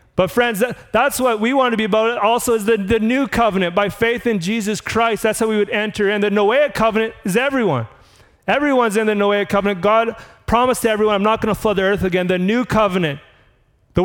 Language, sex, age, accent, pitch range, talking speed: English, male, 30-49, American, 175-220 Hz, 220 wpm